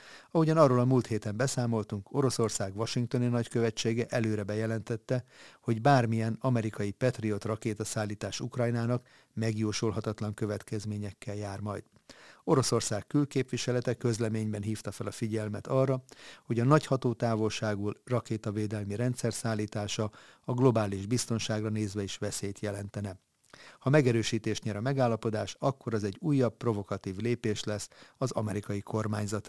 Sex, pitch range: male, 105-125 Hz